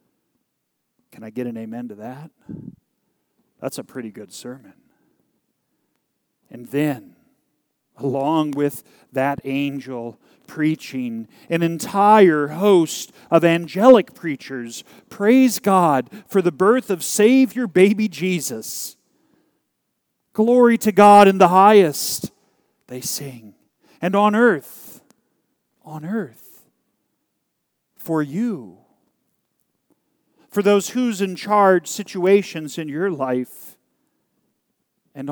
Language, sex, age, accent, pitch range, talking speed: English, male, 40-59, American, 145-205 Hz, 100 wpm